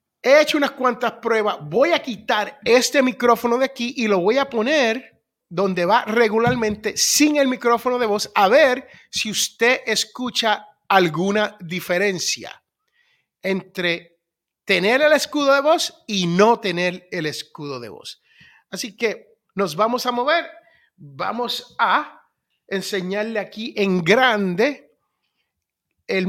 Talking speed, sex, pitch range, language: 130 wpm, male, 205-265 Hz, Spanish